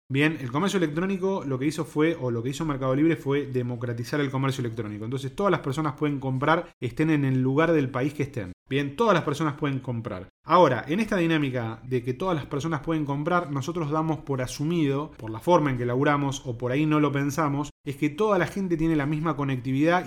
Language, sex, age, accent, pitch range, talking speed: Spanish, male, 30-49, Argentinian, 130-165 Hz, 225 wpm